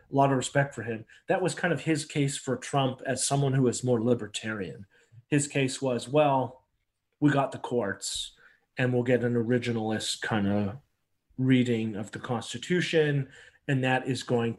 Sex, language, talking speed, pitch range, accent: male, English, 175 wpm, 115-130 Hz, American